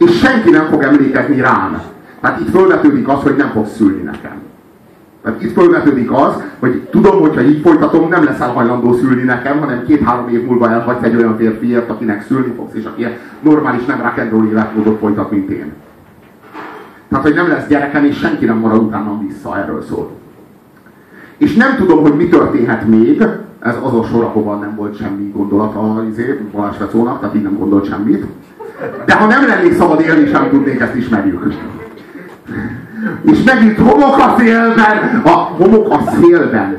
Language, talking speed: Hungarian, 165 wpm